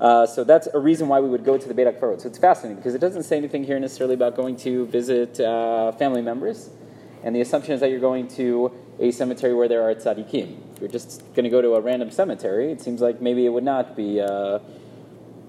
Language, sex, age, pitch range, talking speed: English, male, 30-49, 120-160 Hz, 245 wpm